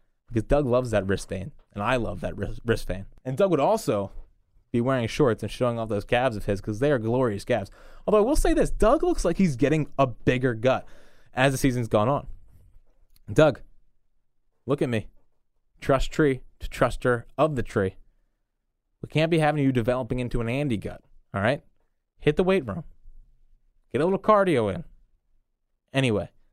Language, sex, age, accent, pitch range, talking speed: English, male, 20-39, American, 105-150 Hz, 190 wpm